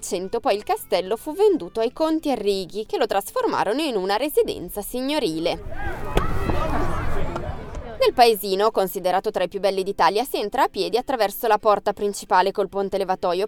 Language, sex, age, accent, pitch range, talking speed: Italian, female, 20-39, native, 195-265 Hz, 150 wpm